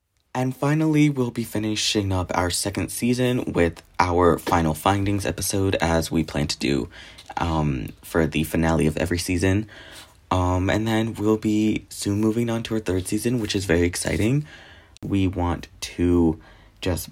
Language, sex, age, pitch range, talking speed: English, male, 20-39, 80-100 Hz, 160 wpm